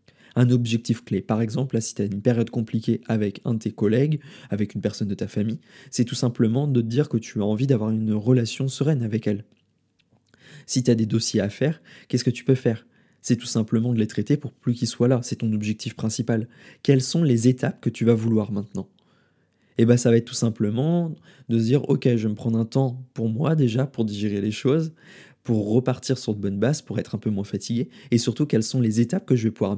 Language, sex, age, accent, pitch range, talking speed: French, male, 20-39, French, 110-130 Hz, 250 wpm